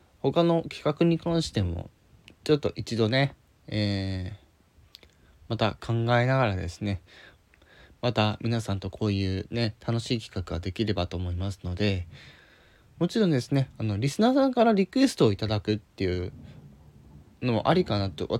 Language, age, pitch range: Japanese, 20-39, 95-145 Hz